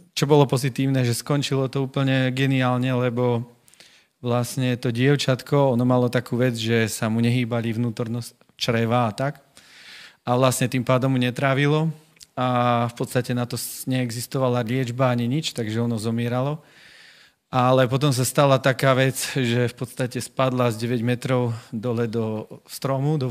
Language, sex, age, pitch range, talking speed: Slovak, male, 40-59, 115-130 Hz, 150 wpm